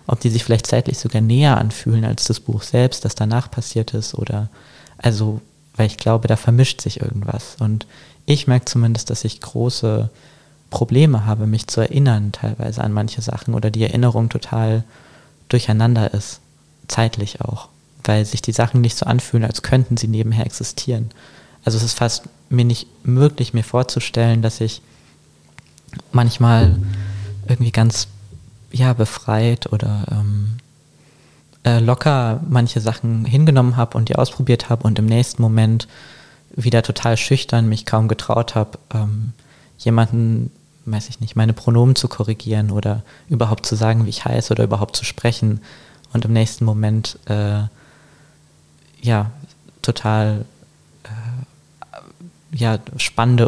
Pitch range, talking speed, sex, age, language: 110-125 Hz, 145 wpm, male, 20-39, German